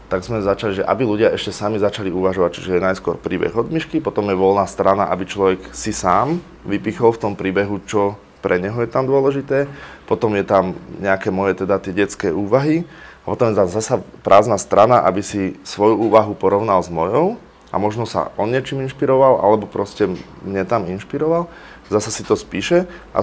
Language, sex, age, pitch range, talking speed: Slovak, male, 20-39, 95-120 Hz, 185 wpm